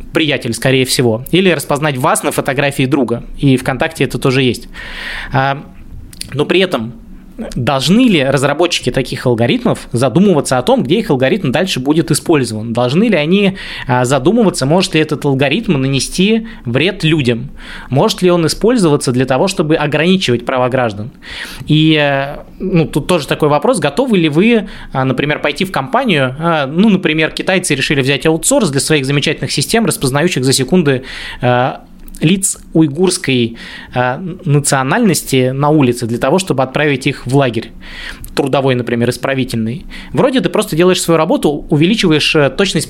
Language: Russian